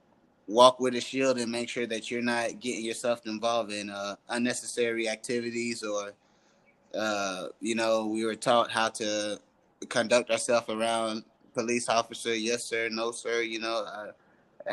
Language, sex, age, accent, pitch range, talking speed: English, male, 20-39, American, 105-120 Hz, 155 wpm